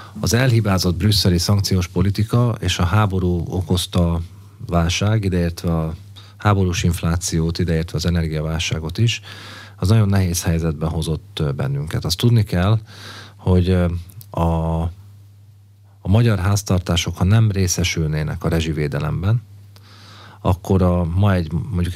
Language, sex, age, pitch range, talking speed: Hungarian, male, 40-59, 85-105 Hz, 115 wpm